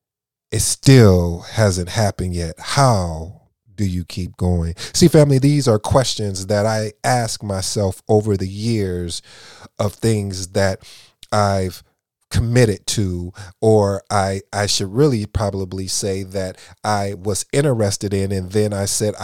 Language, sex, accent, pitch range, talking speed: English, male, American, 95-110 Hz, 135 wpm